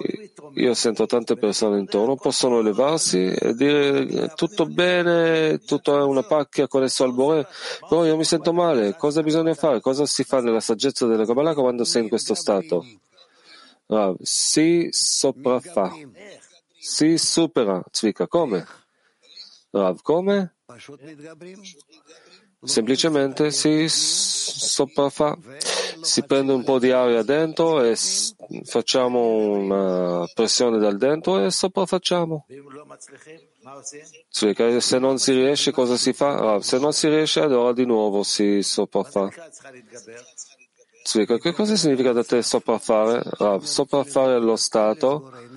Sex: male